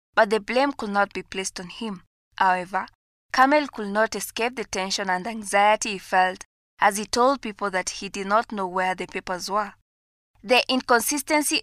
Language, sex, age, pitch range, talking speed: English, female, 20-39, 195-235 Hz, 180 wpm